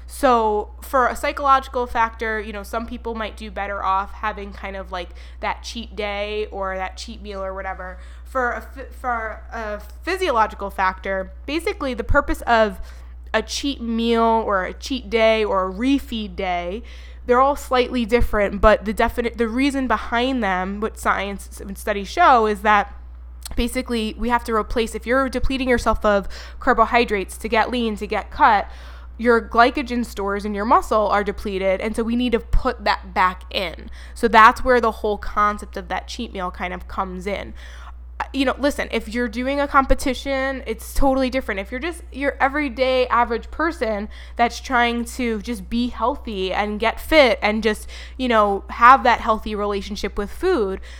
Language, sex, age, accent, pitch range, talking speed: English, female, 20-39, American, 205-250 Hz, 175 wpm